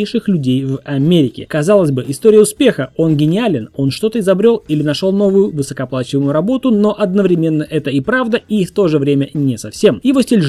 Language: Russian